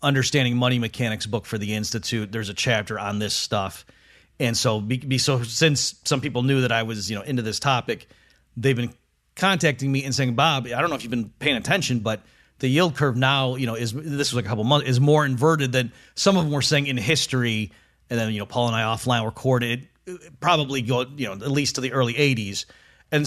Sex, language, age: male, English, 40-59